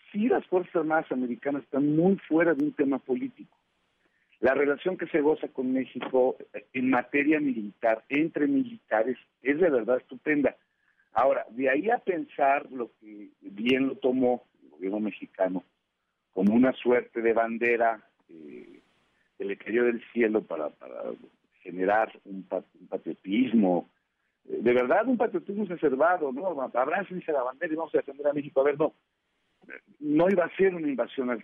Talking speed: 165 wpm